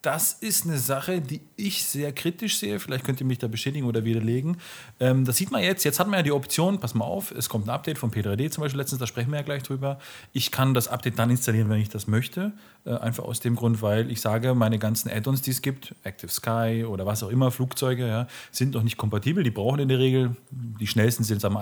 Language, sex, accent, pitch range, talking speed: German, male, German, 110-135 Hz, 245 wpm